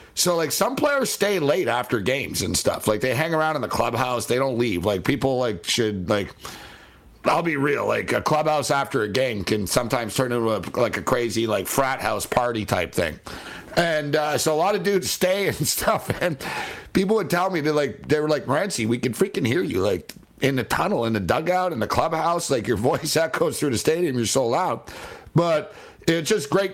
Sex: male